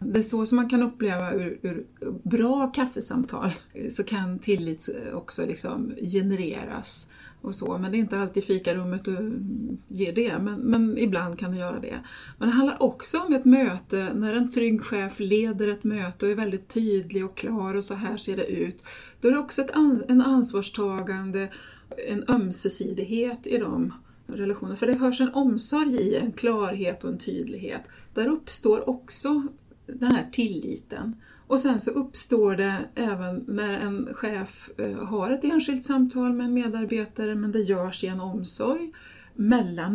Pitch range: 200-255 Hz